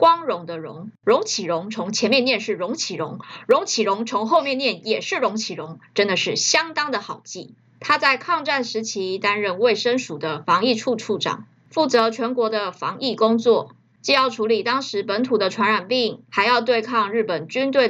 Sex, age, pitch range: female, 20-39, 205-260 Hz